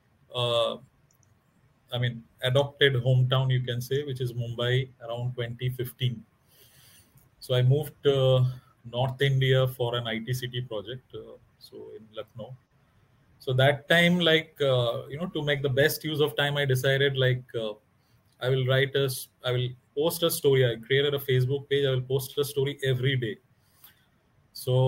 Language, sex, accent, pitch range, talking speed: Hindi, male, native, 125-140 Hz, 160 wpm